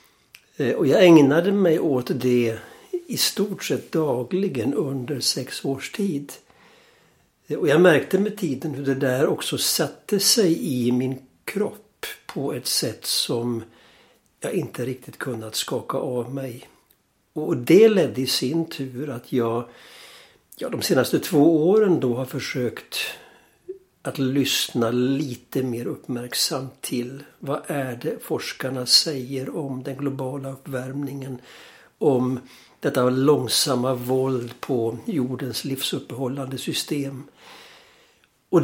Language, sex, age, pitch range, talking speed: Swedish, male, 60-79, 125-150 Hz, 120 wpm